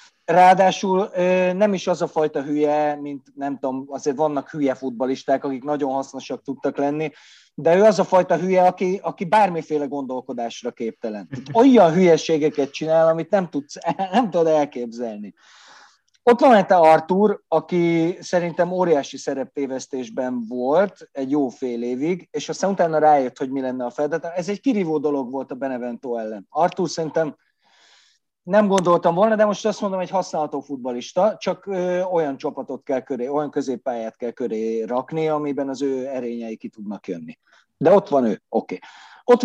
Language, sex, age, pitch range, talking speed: Hungarian, male, 30-49, 135-180 Hz, 165 wpm